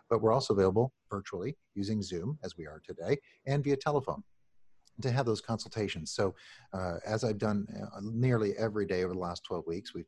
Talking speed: 190 wpm